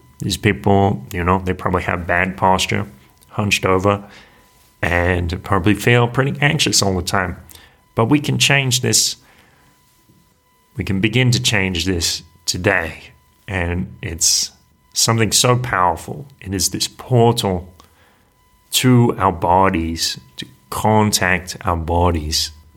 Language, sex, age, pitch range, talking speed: English, male, 30-49, 85-105 Hz, 125 wpm